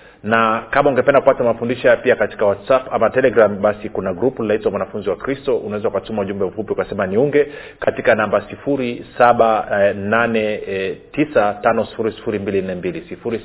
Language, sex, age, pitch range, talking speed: Swahili, male, 40-59, 110-145 Hz, 120 wpm